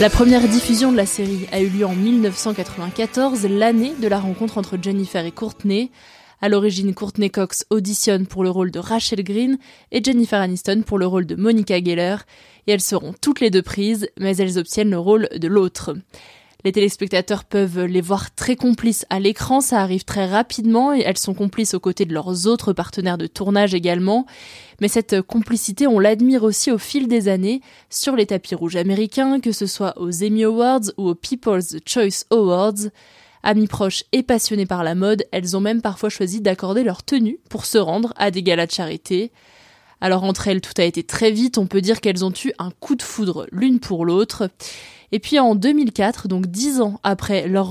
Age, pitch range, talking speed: 20-39, 190-225 Hz, 200 wpm